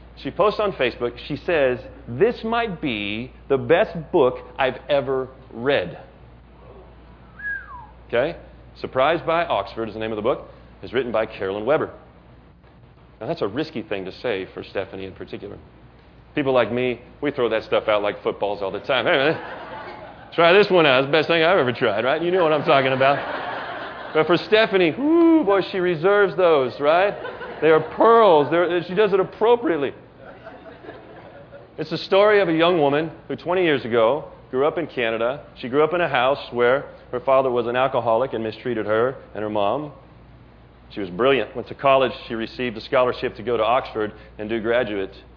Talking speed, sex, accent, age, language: 185 wpm, male, American, 40-59, English